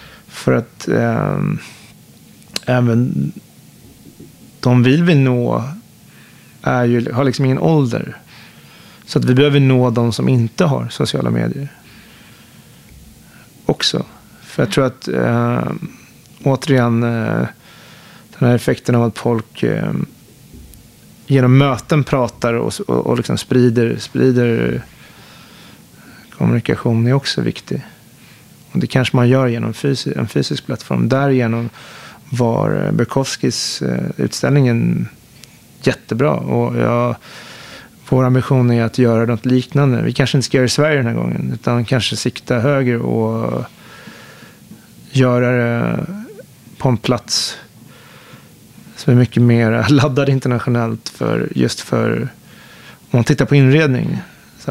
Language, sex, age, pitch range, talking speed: Swedish, male, 30-49, 115-135 Hz, 115 wpm